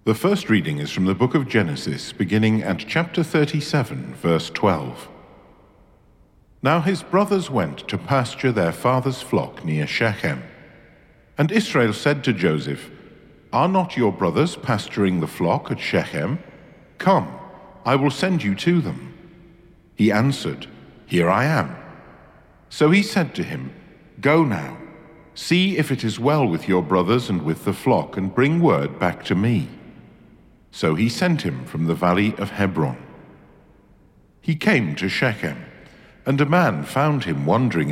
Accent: British